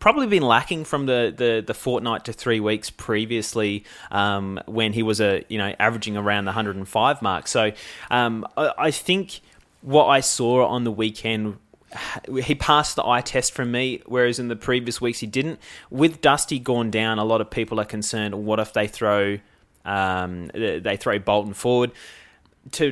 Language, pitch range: English, 105-125 Hz